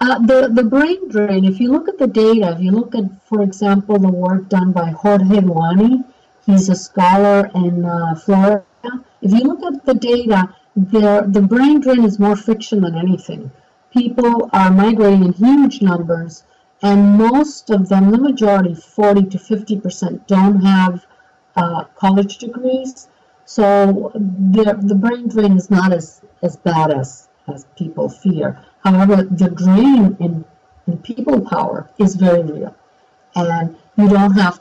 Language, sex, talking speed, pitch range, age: English, female, 160 wpm, 175-225 Hz, 50-69